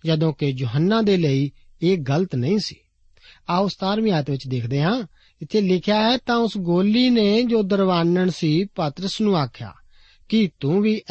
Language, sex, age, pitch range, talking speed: Punjabi, male, 50-69, 140-195 Hz, 165 wpm